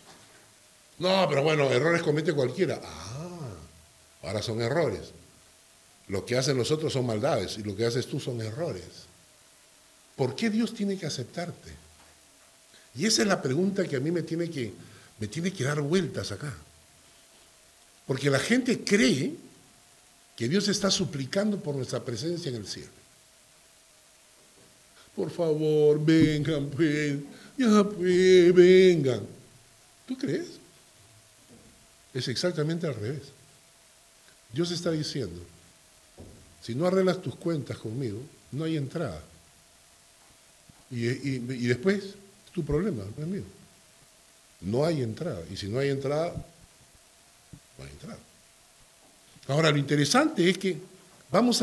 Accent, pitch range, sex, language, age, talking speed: American, 120-175 Hz, male, Spanish, 60-79, 125 wpm